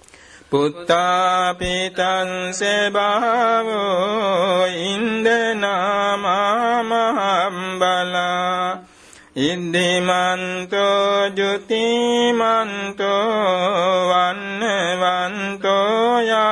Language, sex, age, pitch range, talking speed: Vietnamese, male, 60-79, 180-215 Hz, 45 wpm